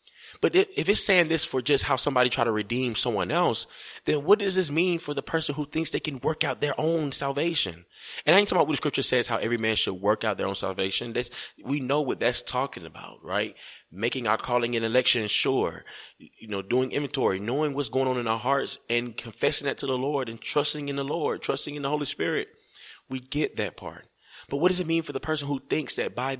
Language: English